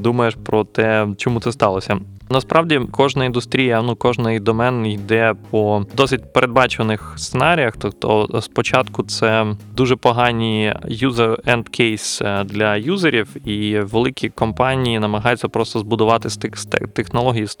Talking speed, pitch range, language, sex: 120 wpm, 110-130 Hz, Ukrainian, male